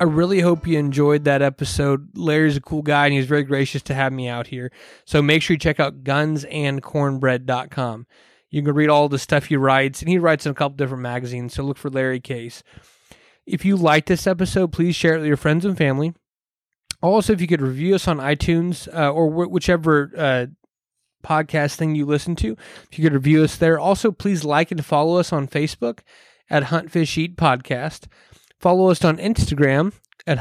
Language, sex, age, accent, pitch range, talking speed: English, male, 20-39, American, 140-170 Hz, 205 wpm